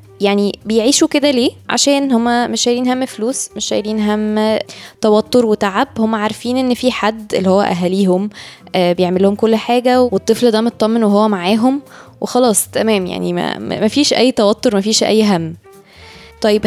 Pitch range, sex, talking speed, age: 205-250 Hz, female, 150 wpm, 20-39